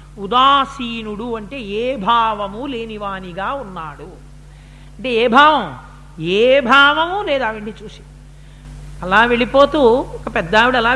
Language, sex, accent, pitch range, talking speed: Telugu, female, native, 190-270 Hz, 110 wpm